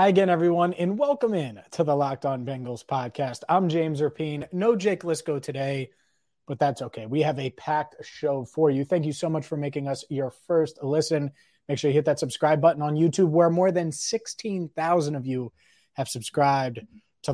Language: English